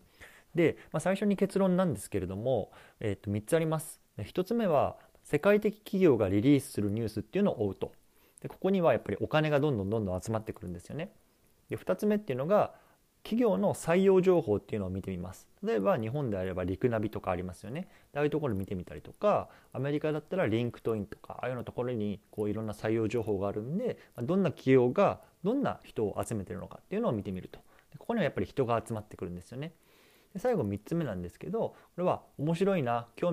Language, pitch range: Japanese, 100-145 Hz